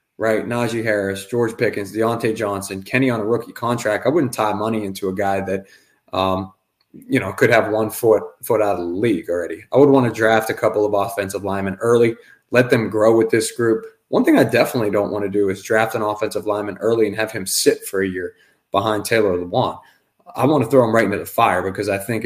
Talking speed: 230 wpm